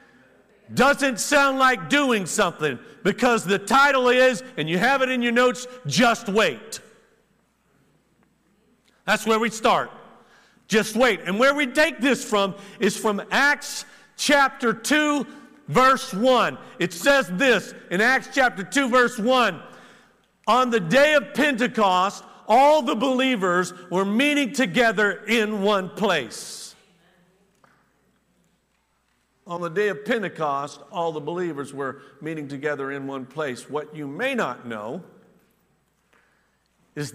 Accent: American